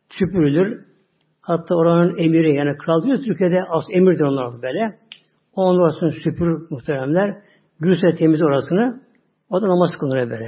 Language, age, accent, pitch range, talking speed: Turkish, 60-79, native, 155-210 Hz, 125 wpm